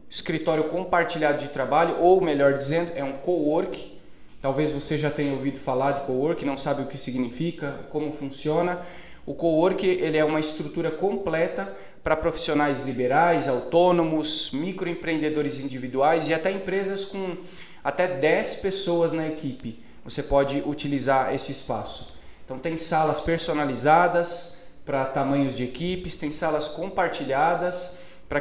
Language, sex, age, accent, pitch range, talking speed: Portuguese, male, 20-39, Brazilian, 140-175 Hz, 135 wpm